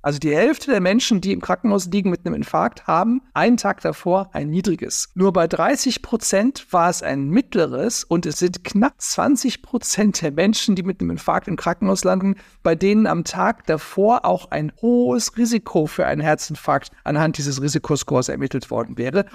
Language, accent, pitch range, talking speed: German, German, 155-200 Hz, 185 wpm